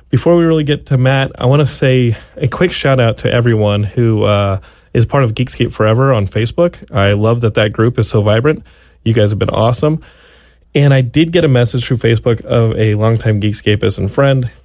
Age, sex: 30-49, male